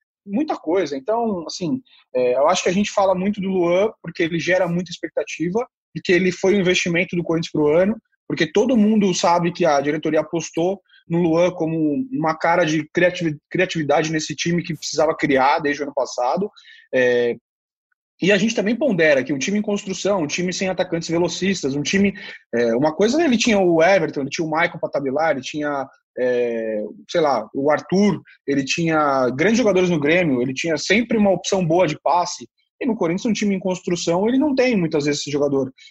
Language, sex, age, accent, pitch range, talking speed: Portuguese, male, 20-39, Brazilian, 155-205 Hz, 195 wpm